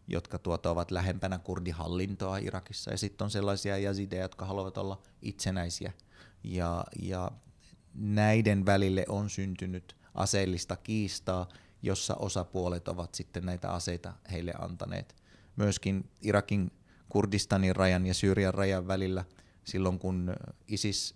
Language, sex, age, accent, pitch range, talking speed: Finnish, male, 30-49, native, 90-105 Hz, 110 wpm